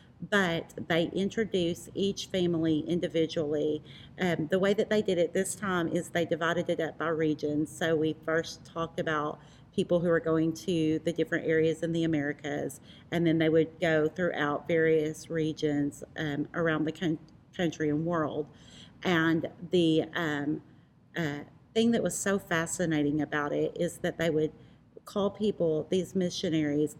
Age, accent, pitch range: 40-59, American, 160-185 Hz